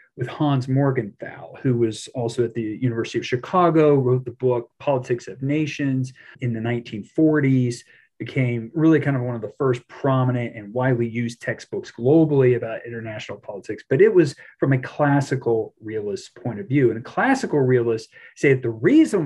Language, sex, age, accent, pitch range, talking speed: English, male, 40-59, American, 120-145 Hz, 170 wpm